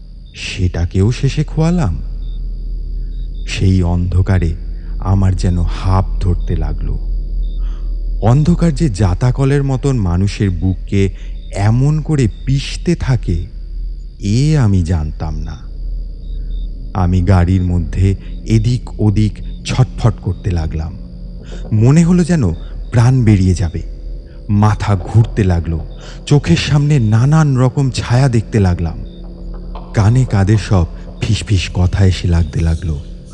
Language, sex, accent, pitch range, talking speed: Bengali, male, native, 80-115 Hz, 85 wpm